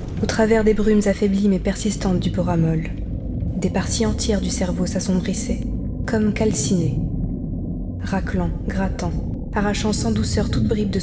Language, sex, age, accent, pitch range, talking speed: French, female, 20-39, French, 180-215 Hz, 135 wpm